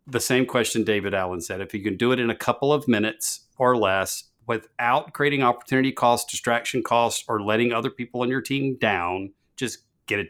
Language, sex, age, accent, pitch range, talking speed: English, male, 50-69, American, 110-130 Hz, 205 wpm